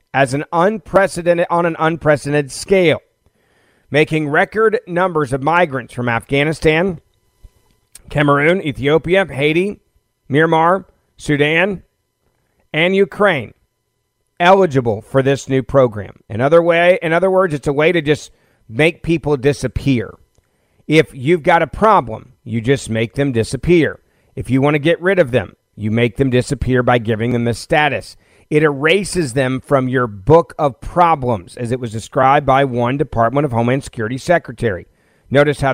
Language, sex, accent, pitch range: English, male, American, 120-155 Hz